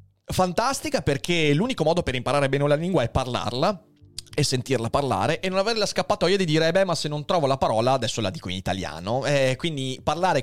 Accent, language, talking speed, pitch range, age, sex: native, Italian, 215 wpm, 115-185 Hz, 30-49, male